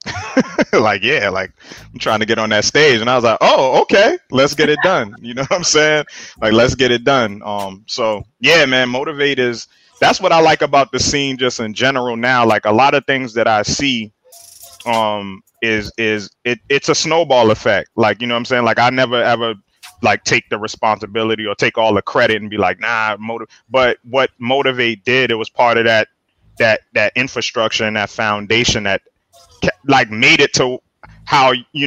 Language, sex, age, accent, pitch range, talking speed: English, male, 20-39, American, 110-130 Hz, 205 wpm